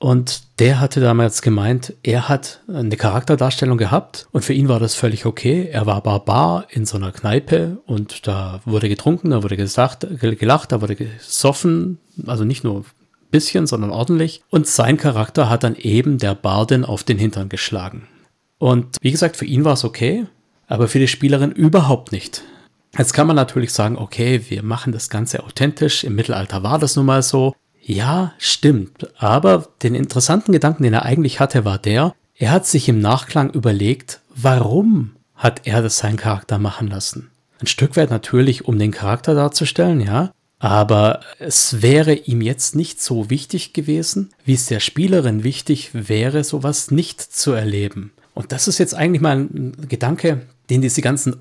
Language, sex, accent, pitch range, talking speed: German, male, German, 115-150 Hz, 175 wpm